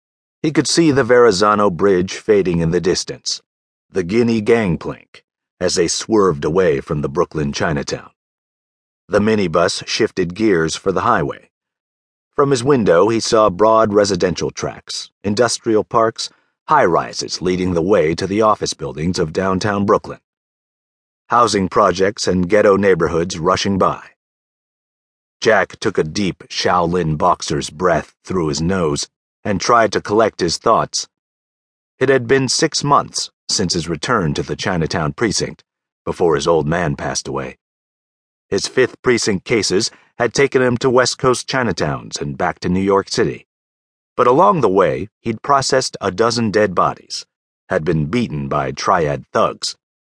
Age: 50-69